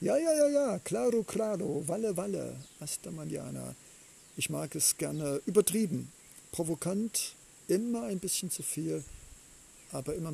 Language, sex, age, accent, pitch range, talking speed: German, male, 50-69, German, 145-205 Hz, 140 wpm